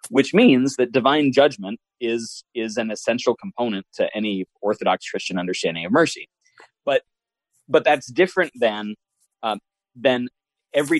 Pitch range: 110-150 Hz